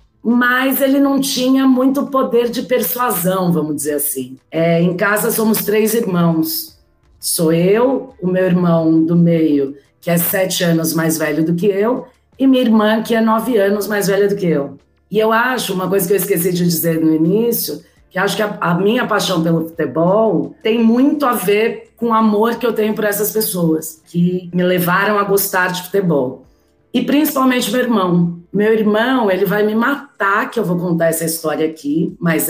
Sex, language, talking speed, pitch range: female, Portuguese, 195 wpm, 165-220 Hz